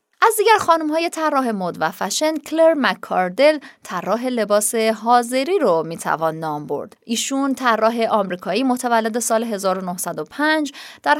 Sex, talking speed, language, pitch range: female, 125 wpm, Persian, 185-275 Hz